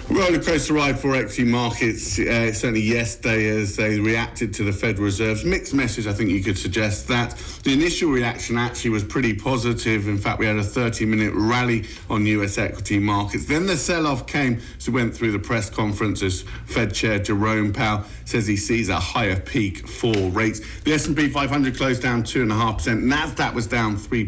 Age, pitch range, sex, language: 50-69, 110-125 Hz, male, English